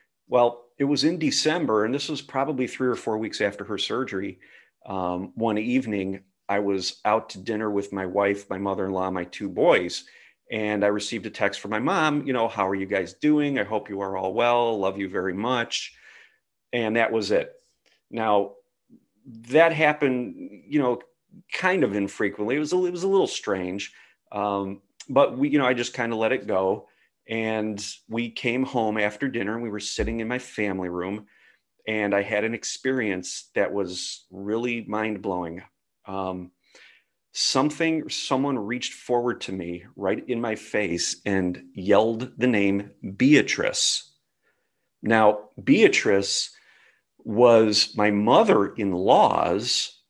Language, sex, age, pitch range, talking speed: English, male, 40-59, 100-125 Hz, 160 wpm